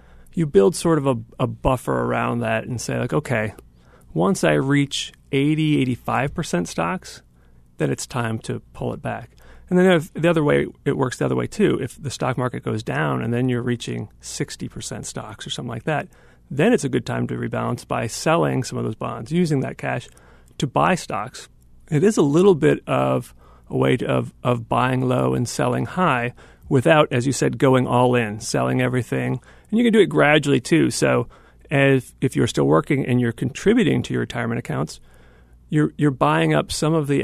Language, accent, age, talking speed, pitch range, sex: English, American, 40-59, 200 wpm, 110-145 Hz, male